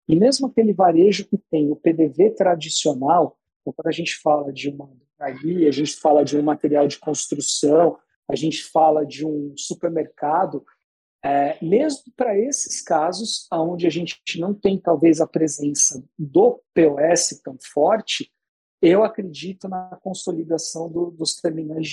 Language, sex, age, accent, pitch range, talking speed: Portuguese, male, 50-69, Brazilian, 155-205 Hz, 150 wpm